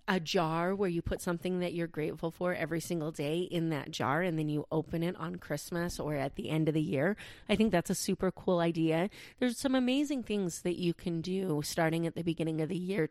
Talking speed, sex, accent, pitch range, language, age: 240 wpm, female, American, 160-190 Hz, English, 30-49